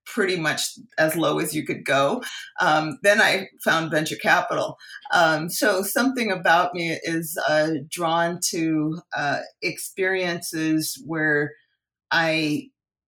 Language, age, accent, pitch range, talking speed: English, 40-59, American, 145-175 Hz, 125 wpm